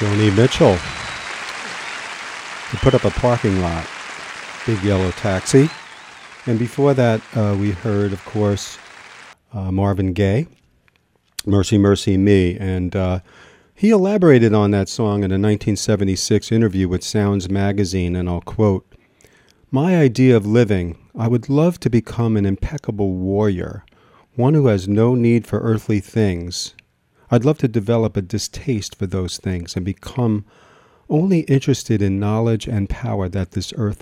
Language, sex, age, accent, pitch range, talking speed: English, male, 40-59, American, 95-115 Hz, 145 wpm